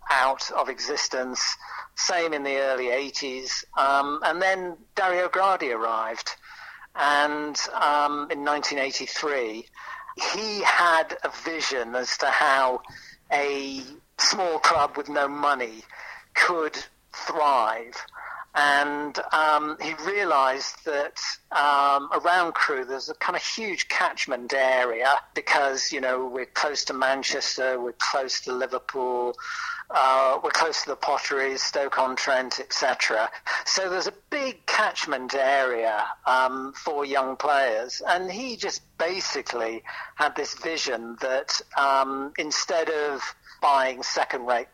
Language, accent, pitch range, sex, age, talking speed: English, British, 130-150 Hz, male, 50-69, 120 wpm